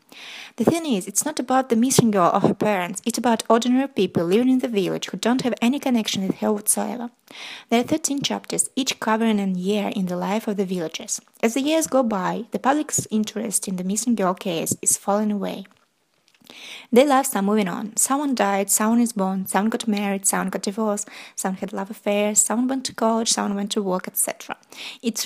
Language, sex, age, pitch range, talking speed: English, female, 20-39, 195-235 Hz, 210 wpm